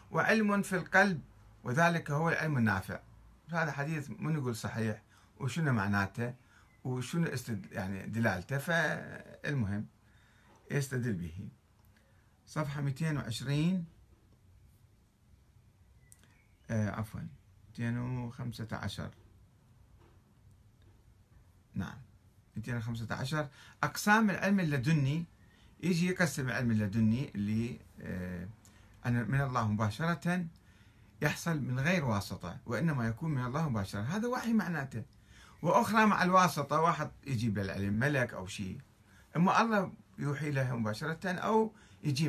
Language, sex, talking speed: Arabic, male, 100 wpm